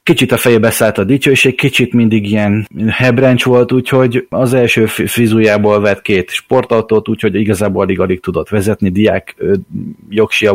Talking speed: 150 wpm